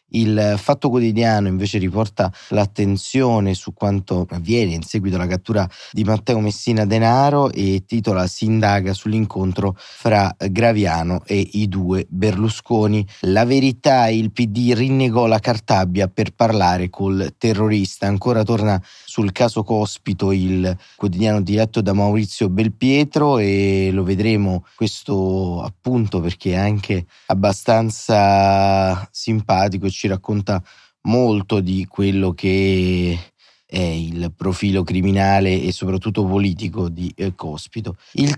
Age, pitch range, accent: 30-49, 95-110 Hz, native